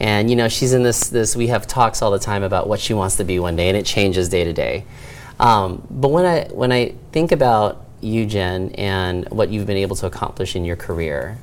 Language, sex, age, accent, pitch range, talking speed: English, male, 30-49, American, 95-120 Hz, 245 wpm